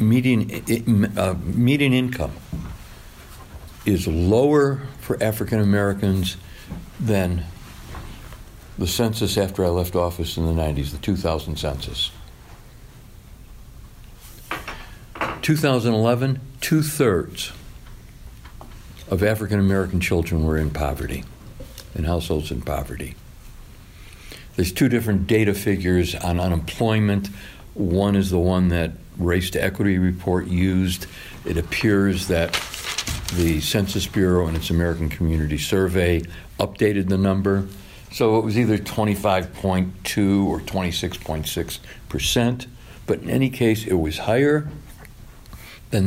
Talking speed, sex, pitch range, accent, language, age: 105 wpm, male, 90-110 Hz, American, English, 60-79